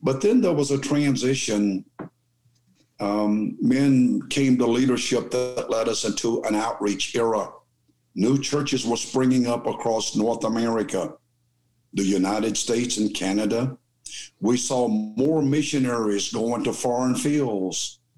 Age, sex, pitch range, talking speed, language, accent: 50-69, male, 115-135 Hz, 130 wpm, English, American